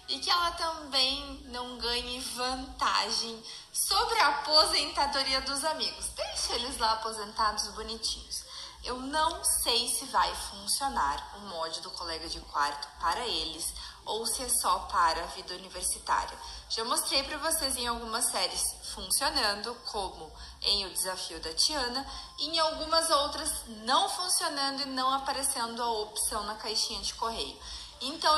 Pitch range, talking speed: 220-300 Hz, 145 wpm